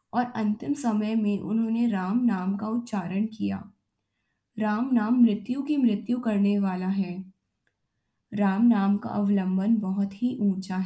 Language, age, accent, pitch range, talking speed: Hindi, 20-39, native, 195-235 Hz, 140 wpm